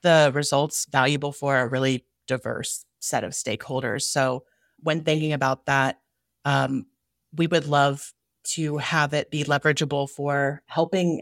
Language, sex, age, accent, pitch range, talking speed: English, female, 30-49, American, 135-155 Hz, 140 wpm